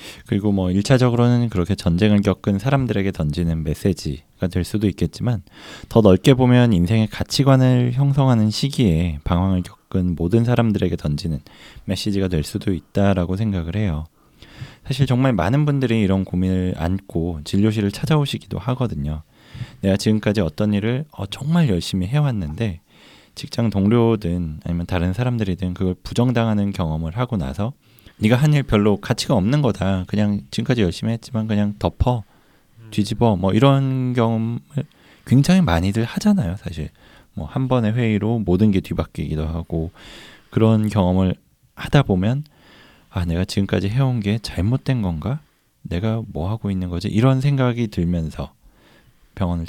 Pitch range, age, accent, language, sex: 90-120 Hz, 20-39, native, Korean, male